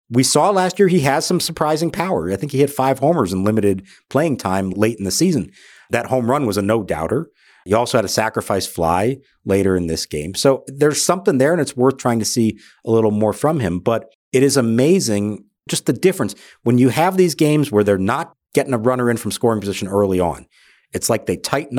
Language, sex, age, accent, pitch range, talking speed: English, male, 50-69, American, 105-145 Hz, 225 wpm